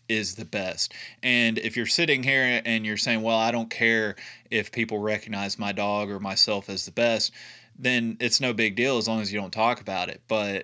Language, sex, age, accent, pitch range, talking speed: English, male, 20-39, American, 105-120 Hz, 220 wpm